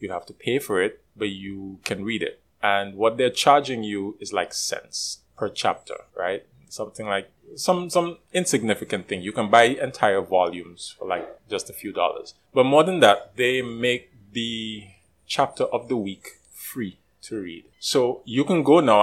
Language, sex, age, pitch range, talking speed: English, male, 30-49, 100-130 Hz, 185 wpm